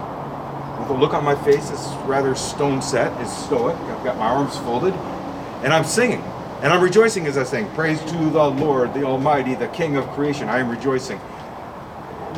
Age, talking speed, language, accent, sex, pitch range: 40-59, 190 wpm, English, American, male, 130-180 Hz